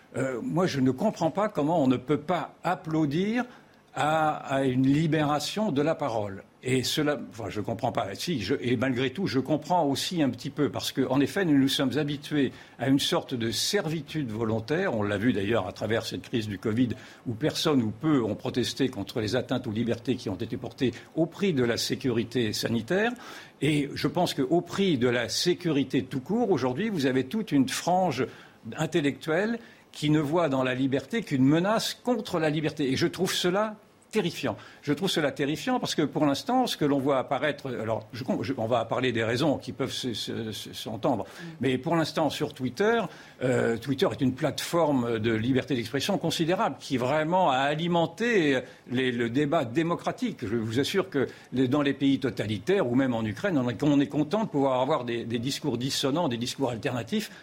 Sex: male